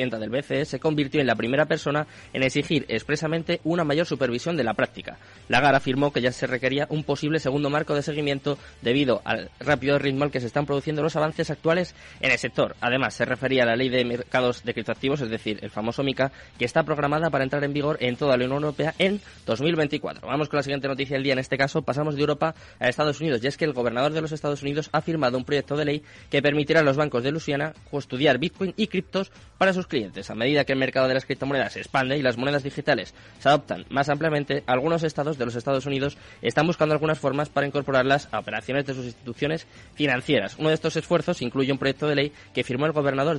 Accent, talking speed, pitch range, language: Spanish, 230 wpm, 130-150 Hz, Spanish